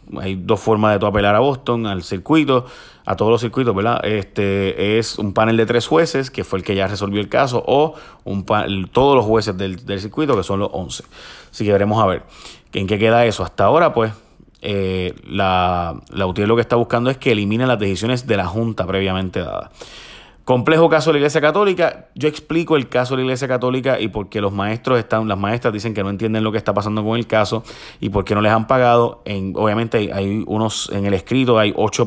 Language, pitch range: Spanish, 100-120 Hz